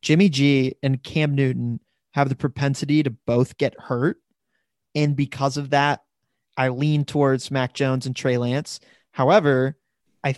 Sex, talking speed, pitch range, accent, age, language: male, 150 wpm, 130-150 Hz, American, 20-39, English